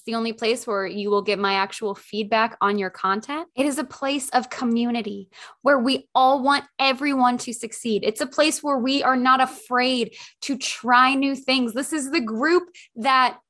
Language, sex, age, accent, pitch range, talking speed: English, female, 10-29, American, 225-300 Hz, 190 wpm